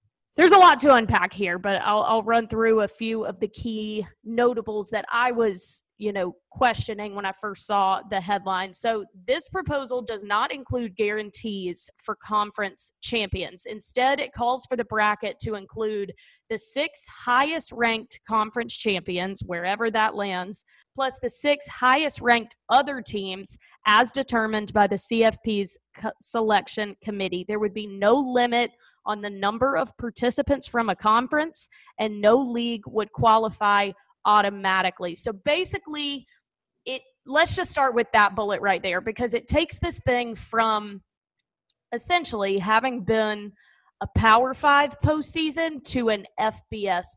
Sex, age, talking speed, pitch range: female, 20-39, 150 wpm, 205-245 Hz